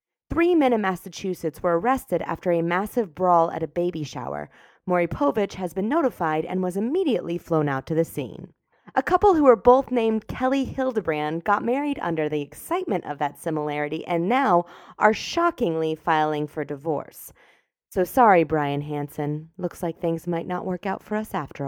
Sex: female